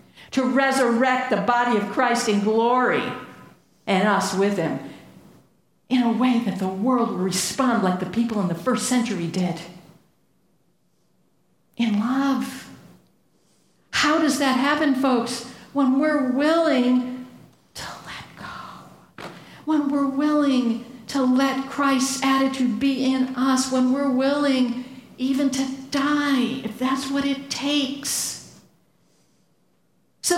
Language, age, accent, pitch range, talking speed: English, 50-69, American, 205-275 Hz, 125 wpm